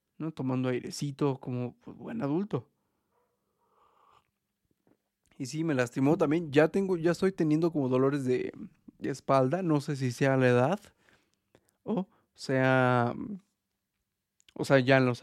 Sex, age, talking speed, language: male, 30-49, 145 wpm, Spanish